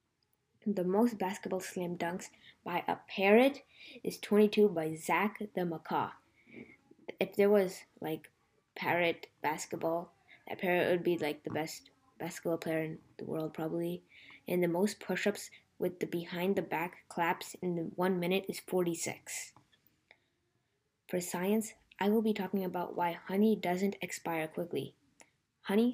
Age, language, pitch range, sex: 20-39, English, 170-200 Hz, female